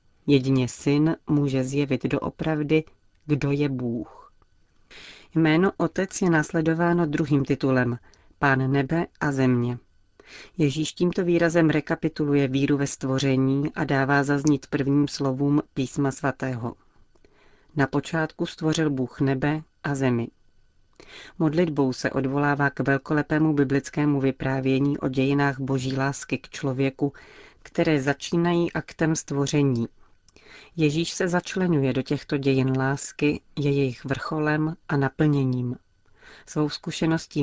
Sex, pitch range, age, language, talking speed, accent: female, 135-155 Hz, 40-59, Czech, 115 wpm, native